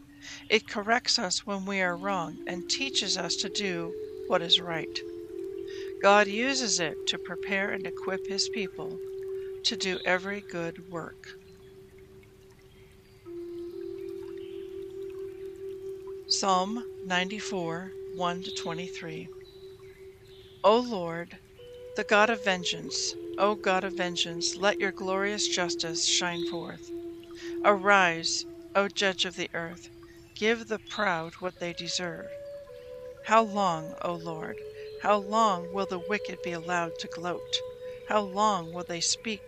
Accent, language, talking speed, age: American, English, 115 wpm, 60-79